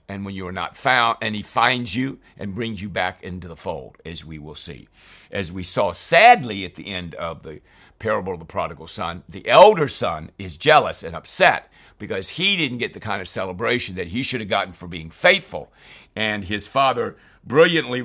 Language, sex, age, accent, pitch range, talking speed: English, male, 60-79, American, 95-125 Hz, 205 wpm